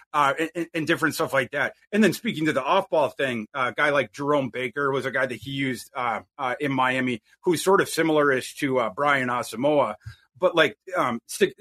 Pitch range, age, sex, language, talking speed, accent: 135-160 Hz, 30-49, male, English, 225 wpm, American